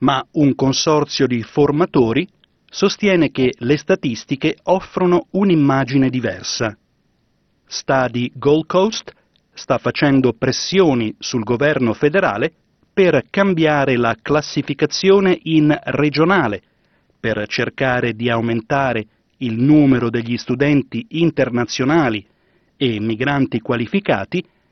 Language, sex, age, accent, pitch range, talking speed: Italian, male, 40-59, native, 125-165 Hz, 95 wpm